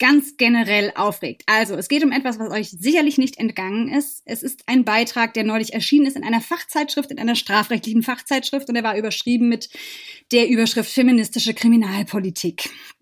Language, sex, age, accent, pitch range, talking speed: German, female, 20-39, German, 225-285 Hz, 175 wpm